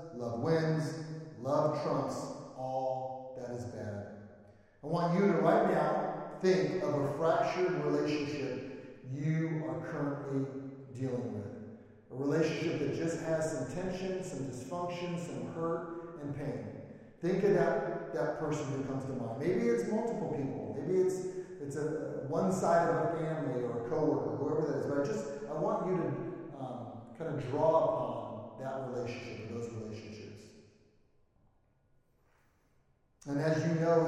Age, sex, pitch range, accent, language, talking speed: 30-49, male, 130-165 Hz, American, English, 155 wpm